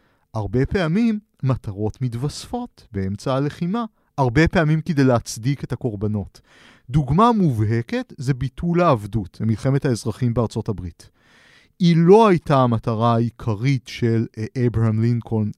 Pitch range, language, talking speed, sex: 115-165 Hz, Hebrew, 110 wpm, male